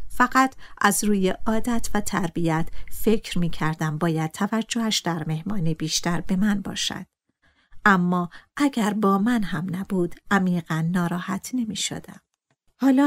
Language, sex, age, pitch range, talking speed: Persian, female, 50-69, 175-225 Hz, 130 wpm